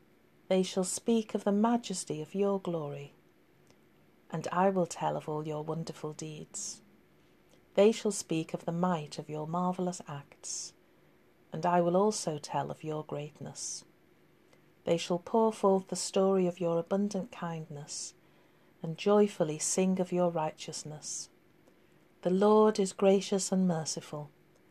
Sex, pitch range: female, 165-195 Hz